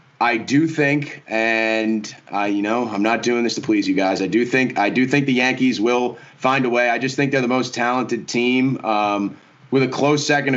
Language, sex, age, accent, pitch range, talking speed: English, male, 20-39, American, 105-130 Hz, 225 wpm